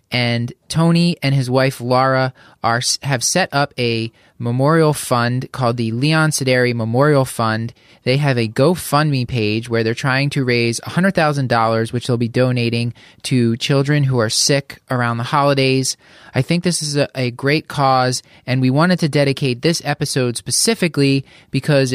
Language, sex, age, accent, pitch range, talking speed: English, male, 20-39, American, 120-145 Hz, 160 wpm